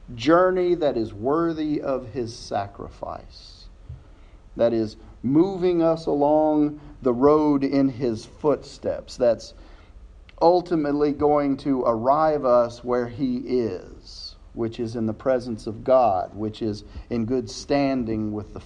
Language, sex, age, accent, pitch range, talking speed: English, male, 40-59, American, 110-160 Hz, 130 wpm